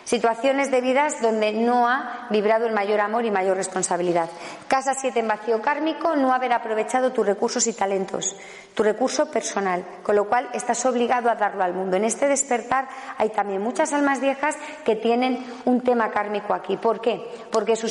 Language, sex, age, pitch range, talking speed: Spanish, female, 40-59, 210-275 Hz, 185 wpm